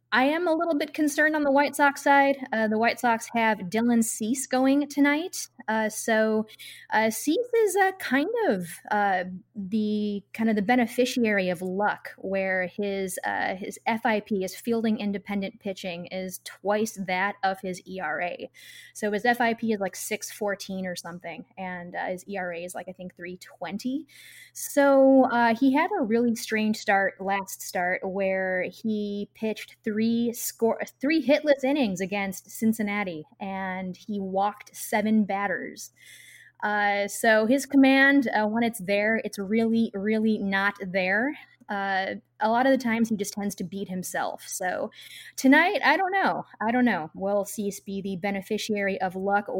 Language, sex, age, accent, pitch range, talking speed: English, female, 20-39, American, 195-245 Hz, 165 wpm